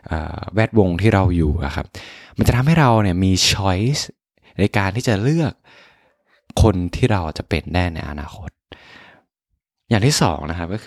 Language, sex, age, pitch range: Thai, male, 20-39, 85-110 Hz